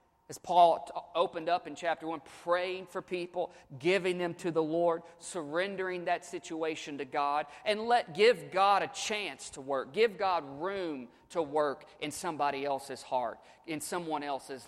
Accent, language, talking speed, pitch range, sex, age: American, English, 165 wpm, 145-185 Hz, male, 40-59